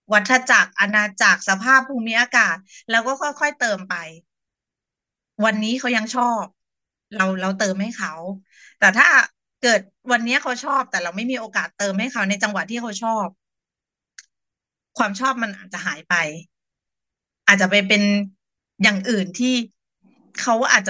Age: 30-49